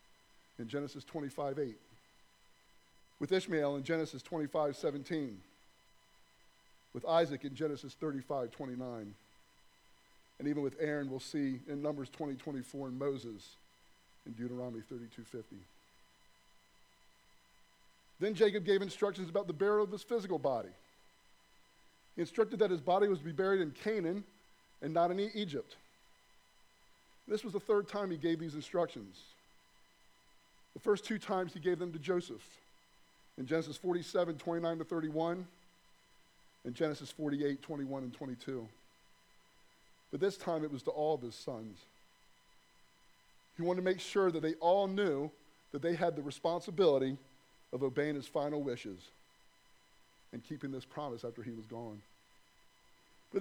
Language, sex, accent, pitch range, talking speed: English, male, American, 140-185 Hz, 145 wpm